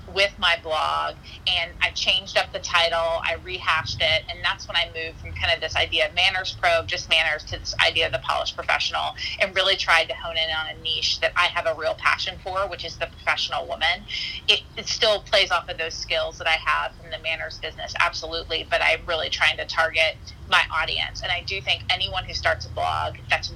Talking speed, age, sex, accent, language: 225 wpm, 30-49, female, American, English